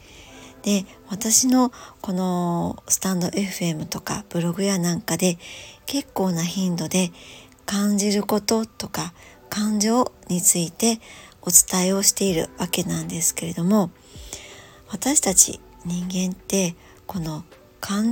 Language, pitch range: Japanese, 170-220 Hz